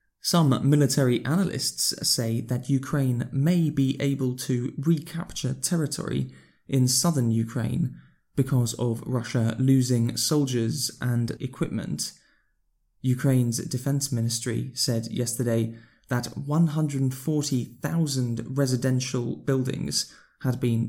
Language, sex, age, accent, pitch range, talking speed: English, male, 20-39, British, 120-145 Hz, 95 wpm